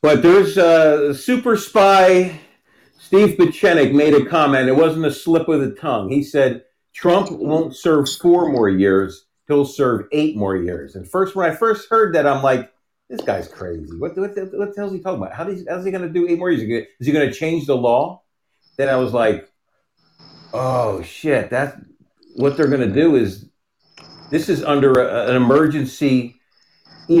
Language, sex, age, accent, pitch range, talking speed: English, male, 50-69, American, 125-170 Hz, 195 wpm